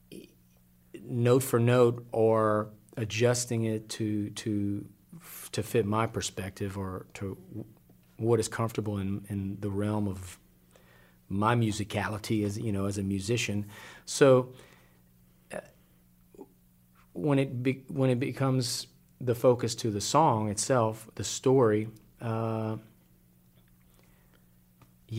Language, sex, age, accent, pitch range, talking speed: English, male, 40-59, American, 95-120 Hz, 110 wpm